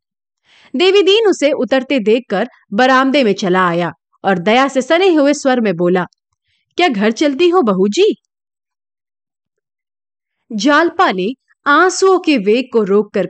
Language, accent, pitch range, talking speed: Hindi, native, 200-315 Hz, 120 wpm